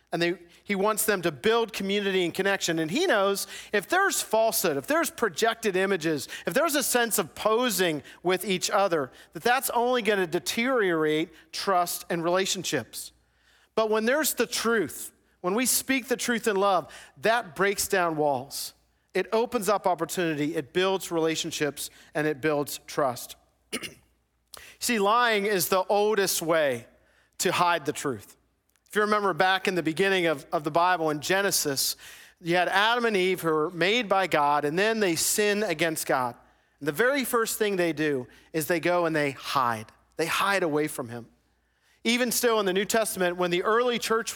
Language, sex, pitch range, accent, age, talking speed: English, male, 160-215 Hz, American, 40-59, 175 wpm